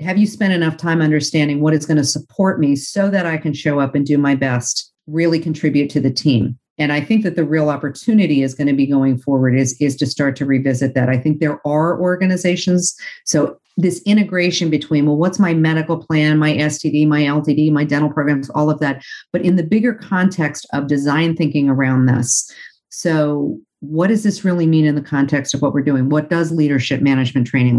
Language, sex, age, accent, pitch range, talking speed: English, female, 50-69, American, 140-165 Hz, 215 wpm